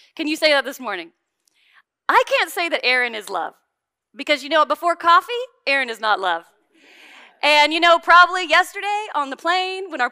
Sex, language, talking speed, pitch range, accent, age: female, English, 190 wpm, 230-315 Hz, American, 30-49